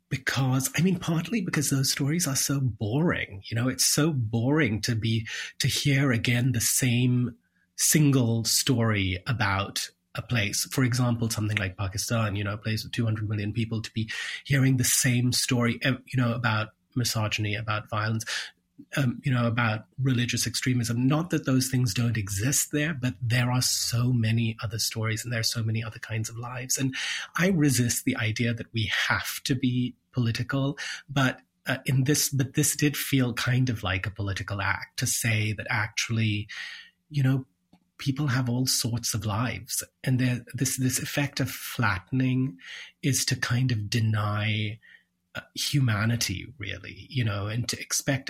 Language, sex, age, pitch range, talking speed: English, male, 30-49, 110-130 Hz, 170 wpm